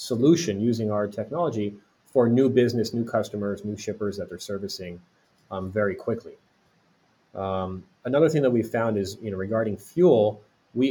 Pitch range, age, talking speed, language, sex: 100-125 Hz, 30-49, 160 wpm, English, male